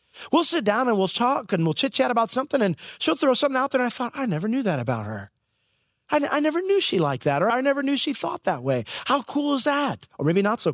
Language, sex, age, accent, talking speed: English, male, 40-59, American, 280 wpm